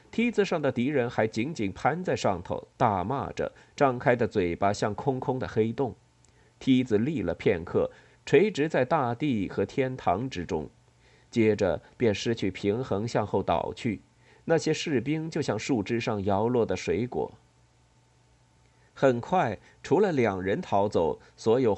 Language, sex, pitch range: Chinese, male, 105-135 Hz